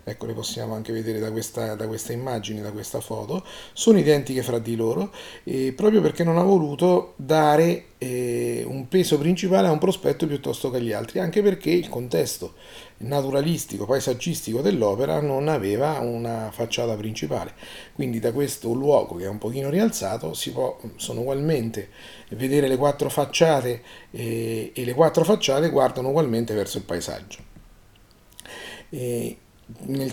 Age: 40-59